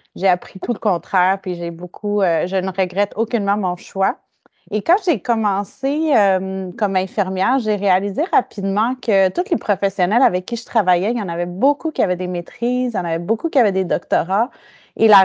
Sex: female